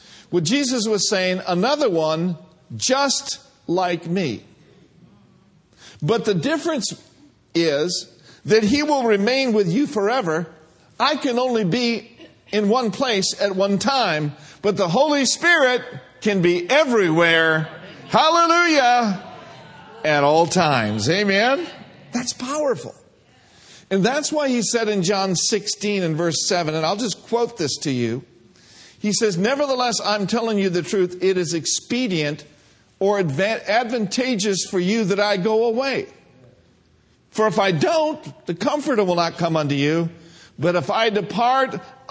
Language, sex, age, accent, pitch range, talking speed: English, male, 50-69, American, 160-235 Hz, 140 wpm